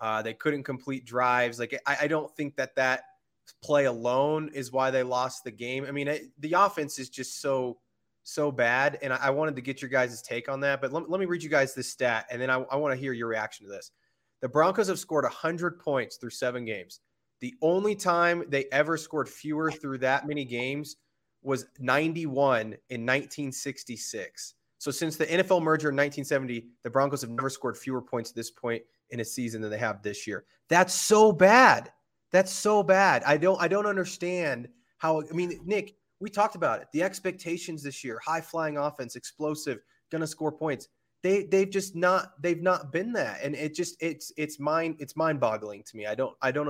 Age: 20-39